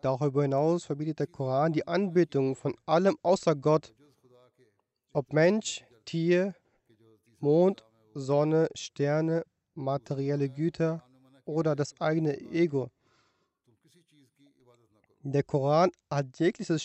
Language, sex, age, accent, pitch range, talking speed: German, male, 30-49, German, 125-165 Hz, 95 wpm